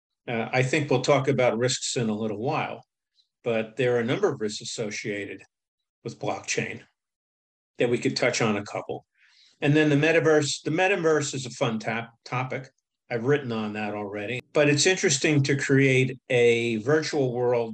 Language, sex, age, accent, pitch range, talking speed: English, male, 50-69, American, 115-140 Hz, 175 wpm